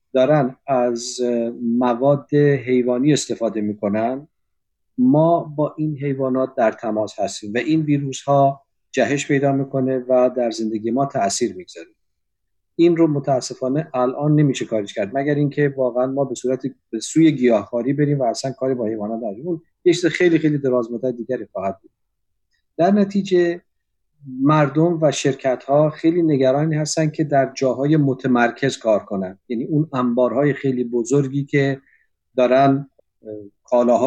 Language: Persian